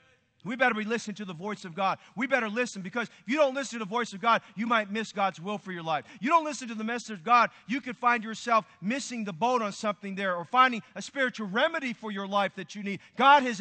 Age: 40-59